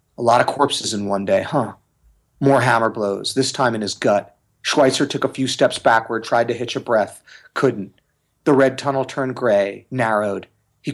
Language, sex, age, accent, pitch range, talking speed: English, male, 30-49, American, 110-130 Hz, 190 wpm